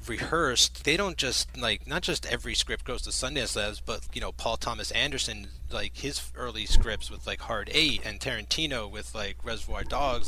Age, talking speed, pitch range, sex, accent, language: 30-49, 195 wpm, 105-140 Hz, male, American, English